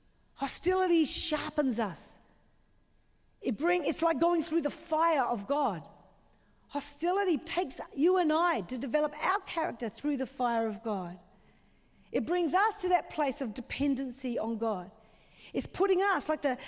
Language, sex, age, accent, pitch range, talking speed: English, female, 40-59, Australian, 240-330 Hz, 150 wpm